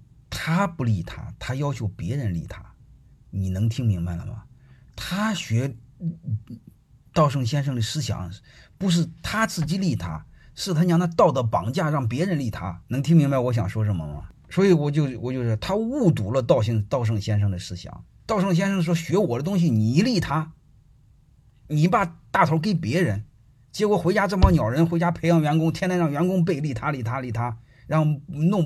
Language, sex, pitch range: Chinese, male, 110-160 Hz